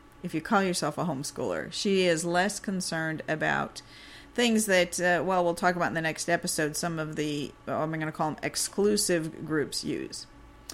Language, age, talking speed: English, 50-69, 185 wpm